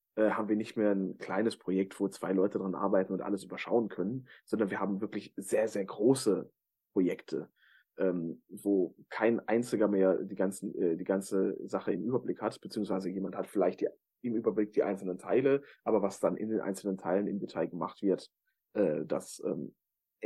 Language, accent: German, German